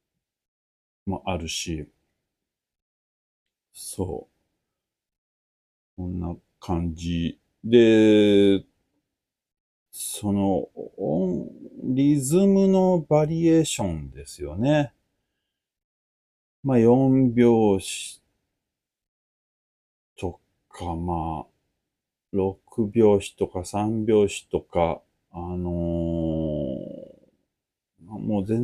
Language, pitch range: Japanese, 80-115 Hz